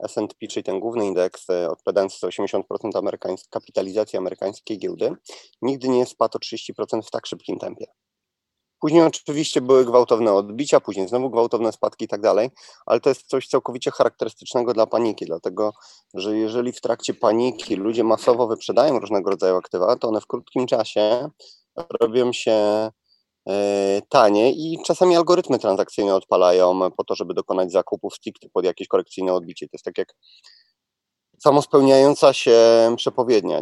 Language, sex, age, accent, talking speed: Polish, male, 30-49, native, 145 wpm